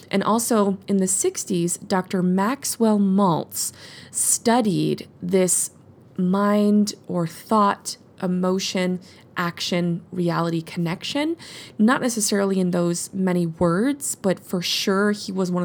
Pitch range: 175-215 Hz